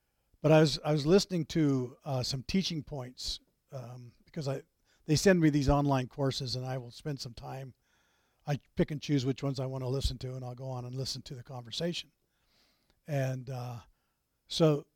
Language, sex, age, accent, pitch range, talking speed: English, male, 50-69, American, 135-175 Hz, 195 wpm